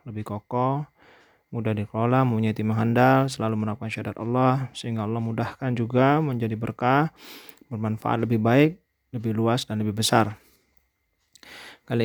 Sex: male